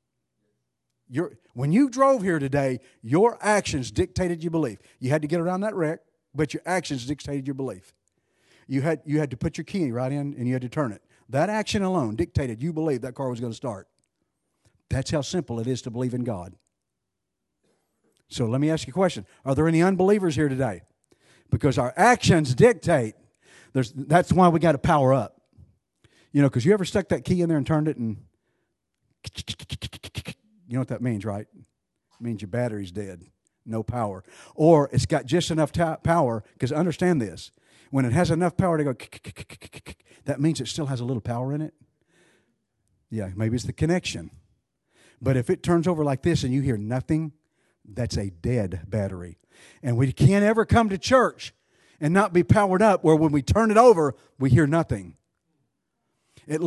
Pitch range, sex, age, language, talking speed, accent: 120-170 Hz, male, 50-69, English, 200 wpm, American